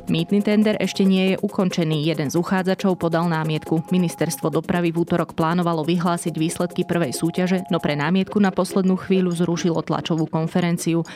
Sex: female